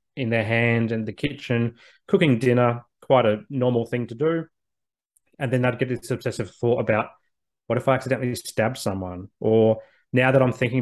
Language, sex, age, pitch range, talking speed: English, male, 20-39, 110-130 Hz, 185 wpm